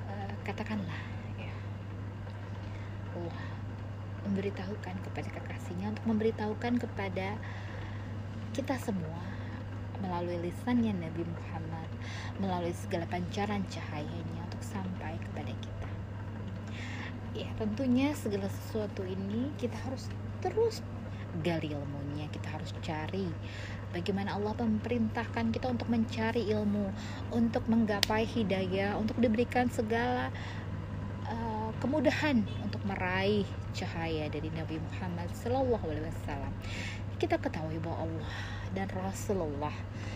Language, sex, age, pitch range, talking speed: Indonesian, female, 20-39, 95-105 Hz, 95 wpm